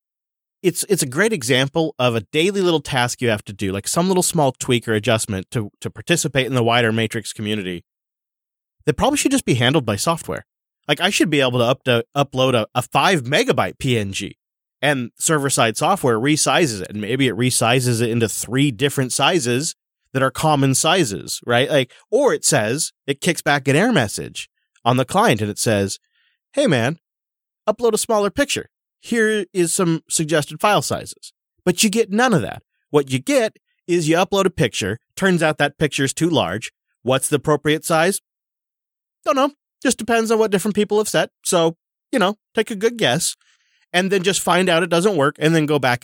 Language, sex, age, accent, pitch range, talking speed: English, male, 30-49, American, 125-190 Hz, 200 wpm